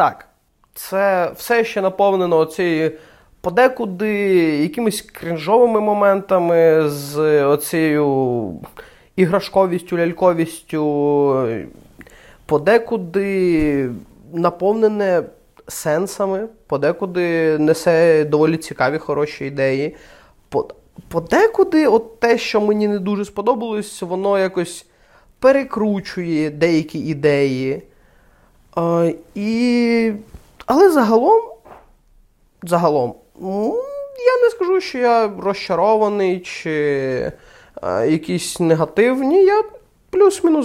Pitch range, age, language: 160-225 Hz, 20-39, Ukrainian